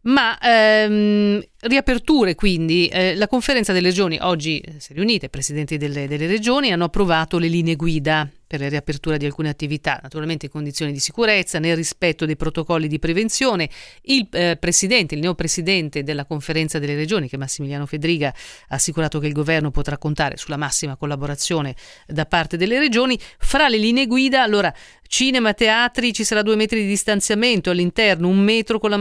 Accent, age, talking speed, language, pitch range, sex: native, 40-59, 175 wpm, Italian, 155-205 Hz, female